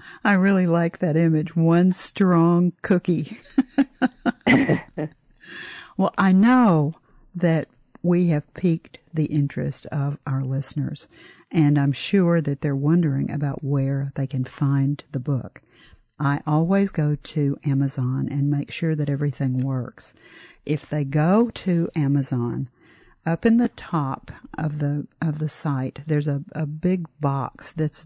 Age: 50-69